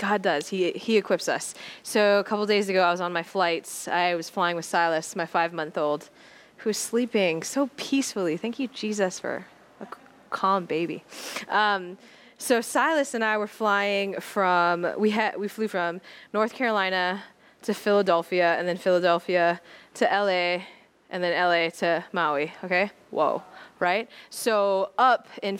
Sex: female